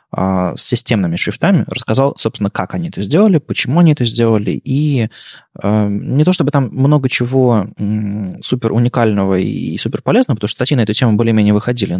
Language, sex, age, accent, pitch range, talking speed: Russian, male, 20-39, native, 100-130 Hz, 165 wpm